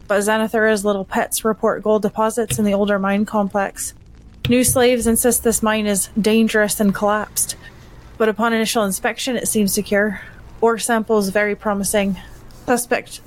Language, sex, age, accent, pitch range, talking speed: English, female, 20-39, American, 205-230 Hz, 150 wpm